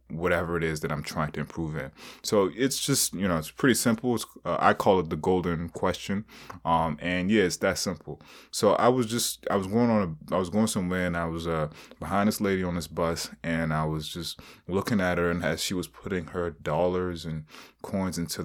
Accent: American